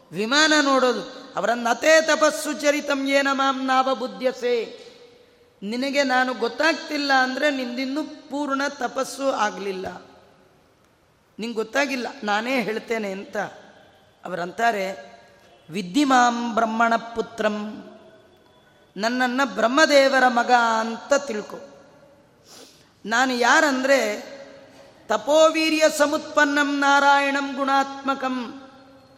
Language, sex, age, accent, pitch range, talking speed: Kannada, female, 30-49, native, 230-280 Hz, 80 wpm